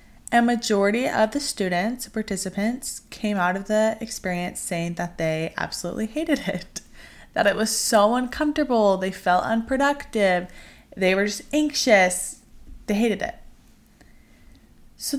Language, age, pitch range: English, 20-39, 190-260 Hz